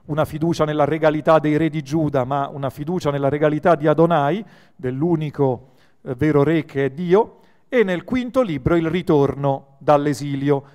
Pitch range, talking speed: 140-170 Hz, 155 wpm